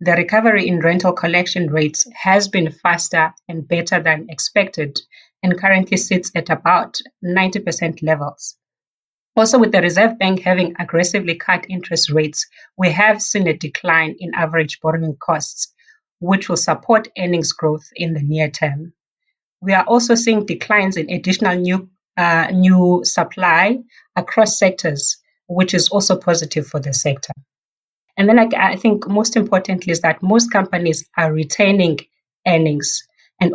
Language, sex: English, female